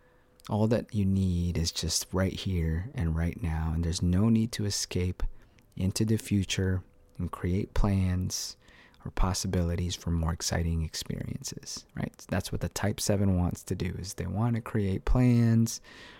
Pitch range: 85-105 Hz